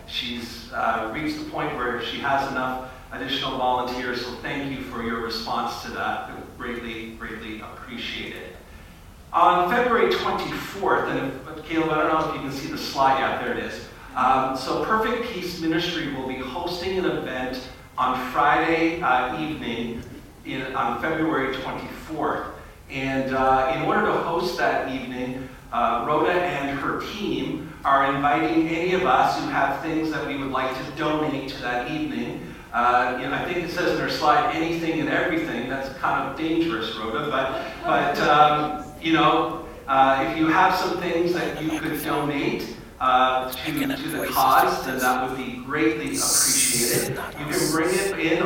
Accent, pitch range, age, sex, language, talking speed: American, 125-155 Hz, 40-59, male, English, 165 wpm